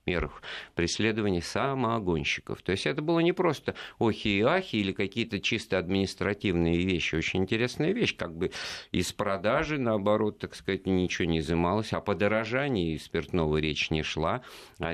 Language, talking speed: Russian, 150 wpm